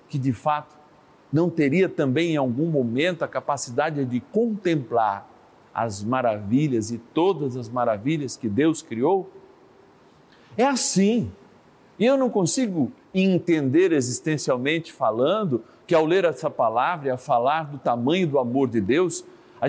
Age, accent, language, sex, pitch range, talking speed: 50-69, Brazilian, Portuguese, male, 135-210 Hz, 135 wpm